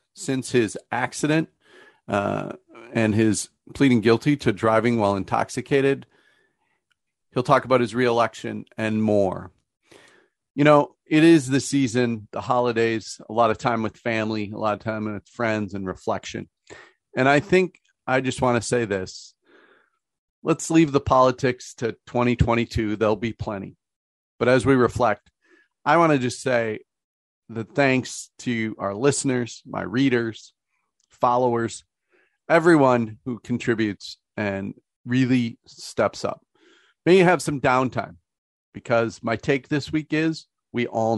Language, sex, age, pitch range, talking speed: English, male, 40-59, 110-135 Hz, 140 wpm